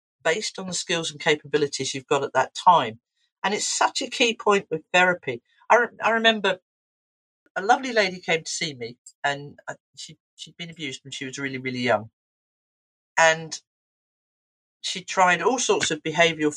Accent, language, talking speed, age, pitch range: British, English, 165 wpm, 40-59, 135-185 Hz